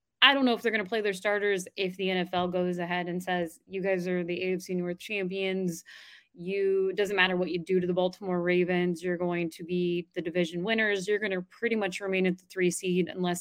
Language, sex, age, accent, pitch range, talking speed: English, female, 20-39, American, 175-220 Hz, 235 wpm